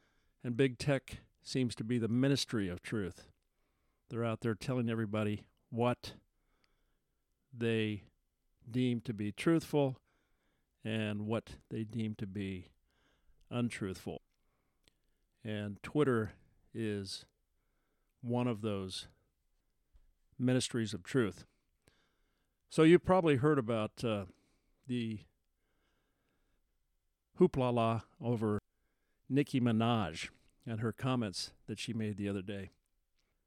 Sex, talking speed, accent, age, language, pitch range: male, 100 wpm, American, 50-69, English, 95-125 Hz